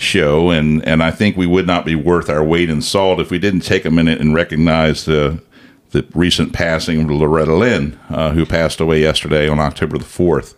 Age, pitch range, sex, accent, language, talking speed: 50-69, 75-90 Hz, male, American, English, 215 wpm